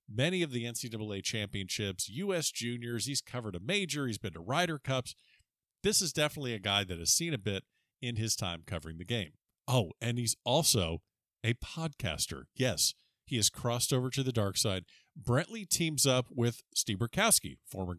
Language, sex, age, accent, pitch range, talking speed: English, male, 50-69, American, 105-150 Hz, 180 wpm